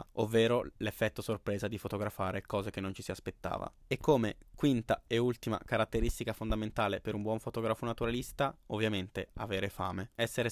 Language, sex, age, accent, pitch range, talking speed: Italian, male, 20-39, native, 100-120 Hz, 155 wpm